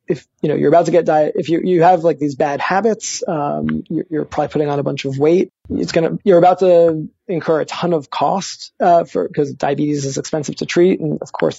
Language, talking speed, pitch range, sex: English, 250 wpm, 150-180 Hz, male